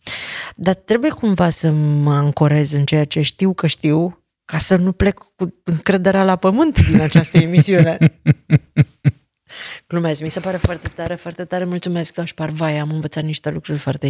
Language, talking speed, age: Romanian, 165 wpm, 30-49